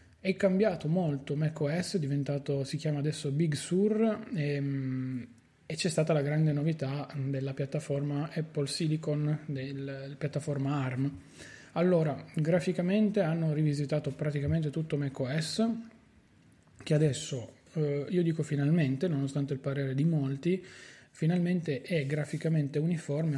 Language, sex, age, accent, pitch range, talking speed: Italian, male, 20-39, native, 135-155 Hz, 120 wpm